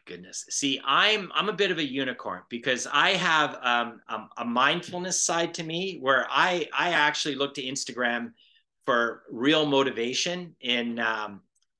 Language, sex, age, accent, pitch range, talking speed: English, male, 50-69, American, 120-150 Hz, 165 wpm